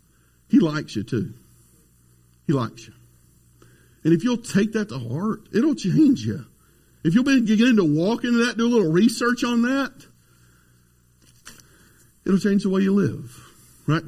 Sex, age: male, 50-69